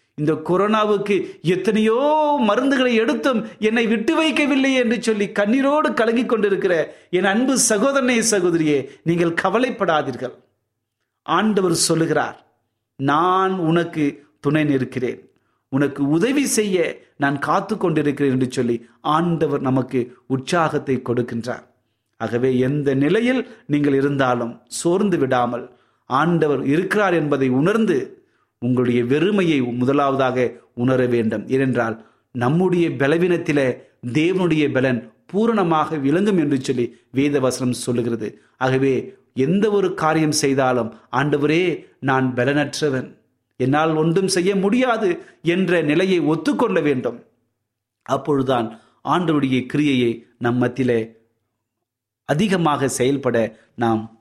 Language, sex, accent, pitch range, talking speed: Tamil, male, native, 125-185 Hz, 95 wpm